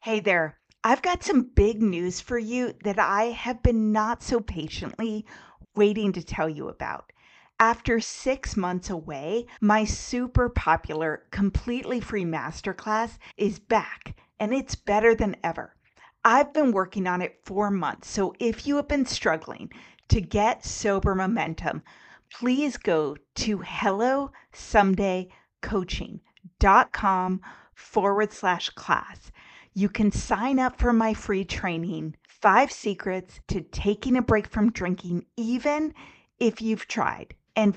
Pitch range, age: 185-235 Hz, 40-59